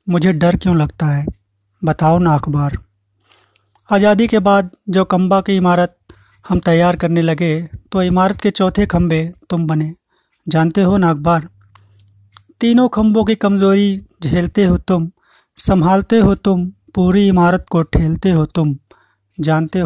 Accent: native